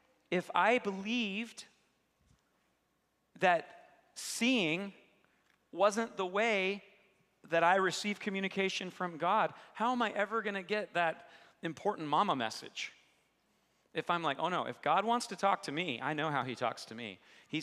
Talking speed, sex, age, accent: 155 wpm, male, 40-59, American